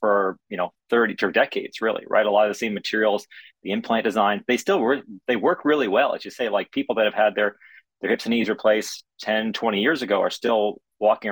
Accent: American